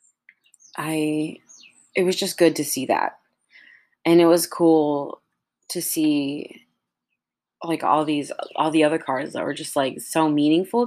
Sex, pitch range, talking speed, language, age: female, 140-170 Hz, 150 wpm, English, 20-39